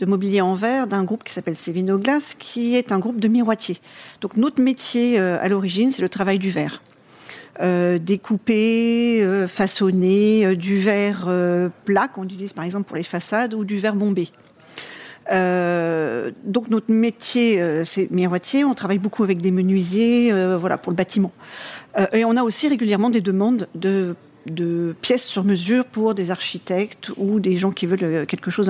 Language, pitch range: French, 190-235 Hz